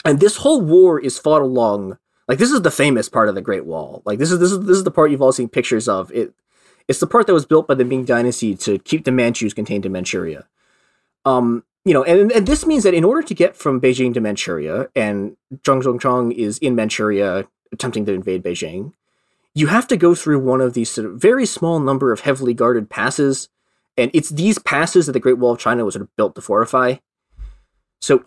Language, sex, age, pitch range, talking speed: English, male, 20-39, 115-170 Hz, 230 wpm